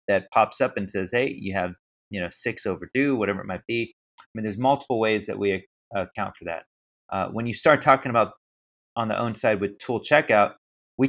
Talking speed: 215 wpm